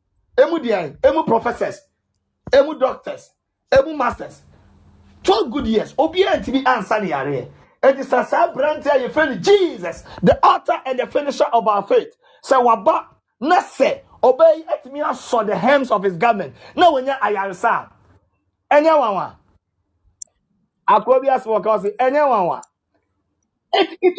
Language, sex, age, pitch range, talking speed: English, male, 40-59, 240-330 Hz, 140 wpm